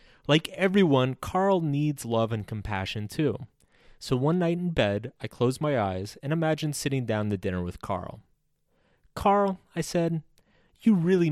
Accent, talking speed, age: American, 160 wpm, 30-49